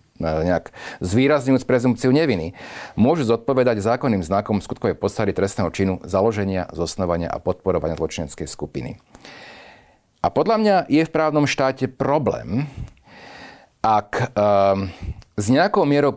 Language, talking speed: Slovak, 115 wpm